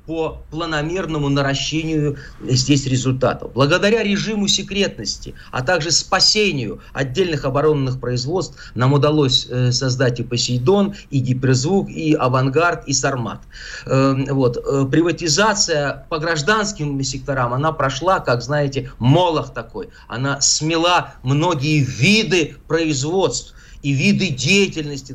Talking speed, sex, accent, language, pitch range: 105 wpm, male, native, Russian, 135-170 Hz